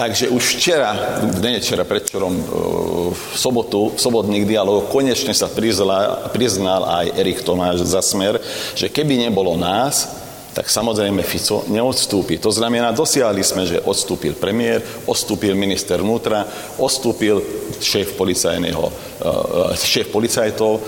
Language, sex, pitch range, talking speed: Slovak, male, 95-125 Hz, 120 wpm